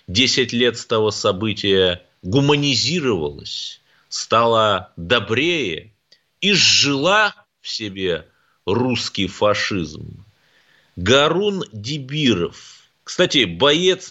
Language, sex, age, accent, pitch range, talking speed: Russian, male, 30-49, native, 105-140 Hz, 75 wpm